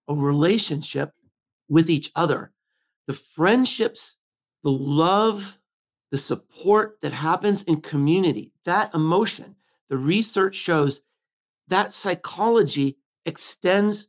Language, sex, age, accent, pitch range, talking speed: English, male, 50-69, American, 145-200 Hz, 100 wpm